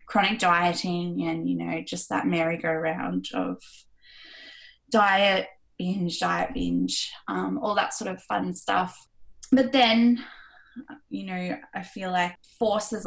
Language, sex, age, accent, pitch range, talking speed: English, female, 10-29, Australian, 175-250 Hz, 130 wpm